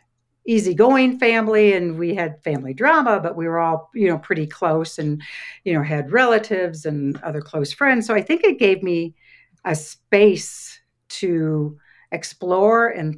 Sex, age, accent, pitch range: female, 60-79, American, 155-210 Hz